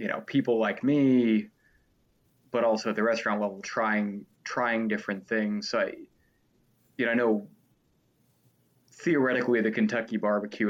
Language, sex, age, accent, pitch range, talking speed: English, male, 20-39, American, 105-125 Hz, 140 wpm